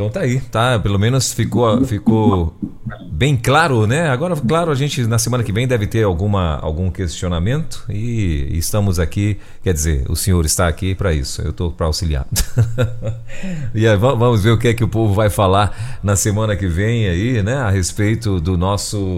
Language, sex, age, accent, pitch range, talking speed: Portuguese, male, 40-59, Brazilian, 90-120 Hz, 190 wpm